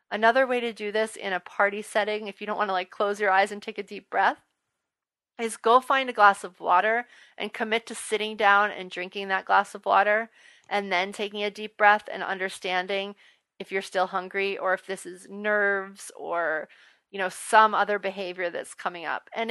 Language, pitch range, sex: English, 195-225 Hz, female